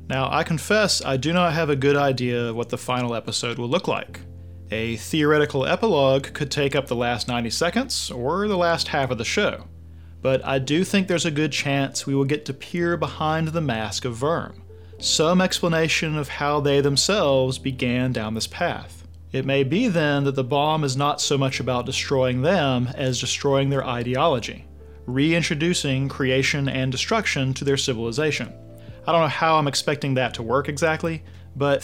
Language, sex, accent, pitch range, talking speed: English, male, American, 120-155 Hz, 185 wpm